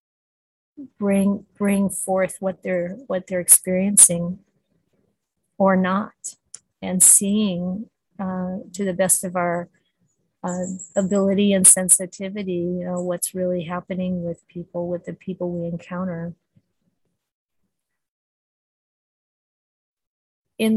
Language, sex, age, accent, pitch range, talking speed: English, female, 50-69, American, 180-200 Hz, 100 wpm